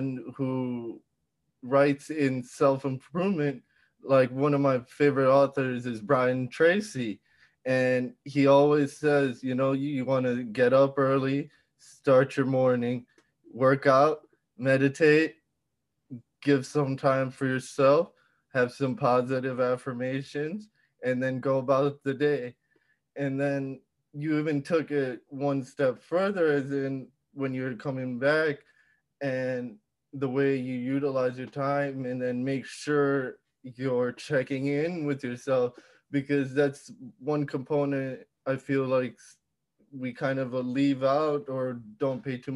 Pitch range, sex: 130-145 Hz, male